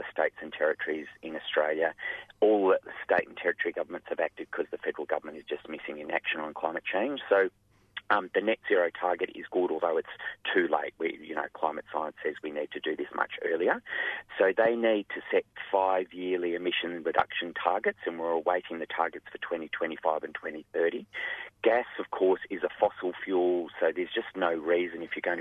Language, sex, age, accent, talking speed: English, male, 30-49, Australian, 200 wpm